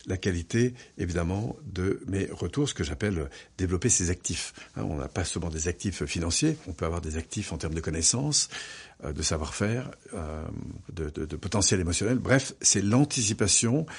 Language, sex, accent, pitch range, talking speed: French, male, French, 85-110 Hz, 165 wpm